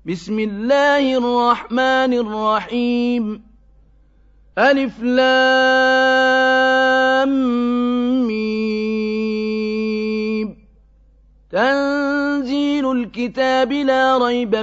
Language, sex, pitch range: Arabic, male, 215-260 Hz